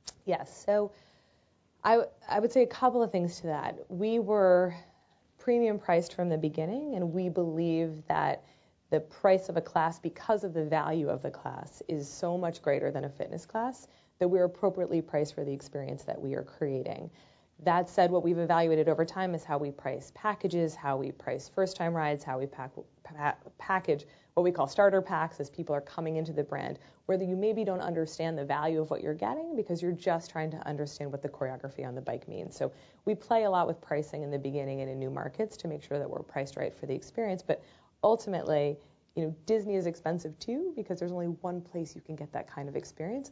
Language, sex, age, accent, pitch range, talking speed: English, female, 30-49, American, 150-185 Hz, 215 wpm